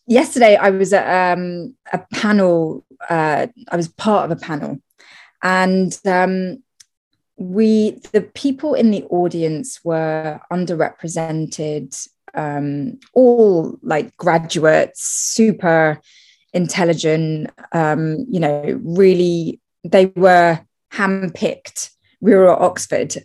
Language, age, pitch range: English, 20-39, 165-225 Hz